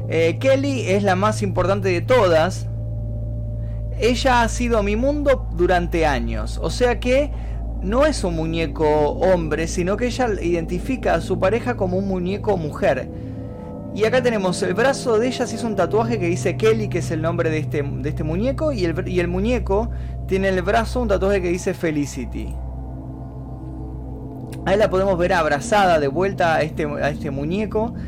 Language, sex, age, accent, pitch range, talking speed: Spanish, male, 20-39, Argentinian, 115-170 Hz, 180 wpm